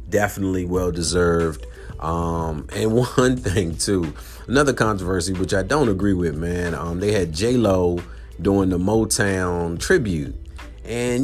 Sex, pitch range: male, 85-105 Hz